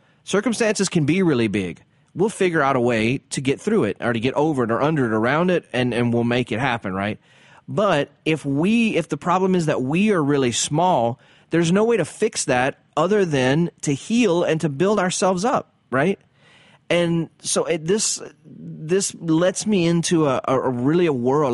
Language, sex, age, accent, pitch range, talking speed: English, male, 30-49, American, 125-170 Hz, 200 wpm